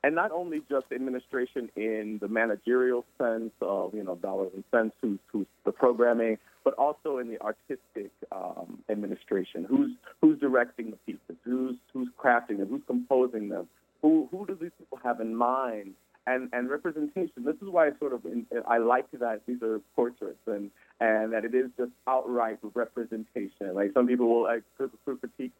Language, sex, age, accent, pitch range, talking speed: English, male, 40-59, American, 115-145 Hz, 180 wpm